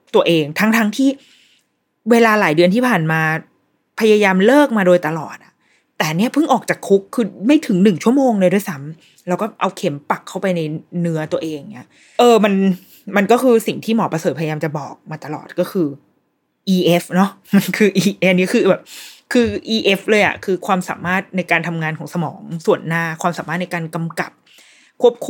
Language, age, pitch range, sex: Thai, 20-39, 165-210 Hz, female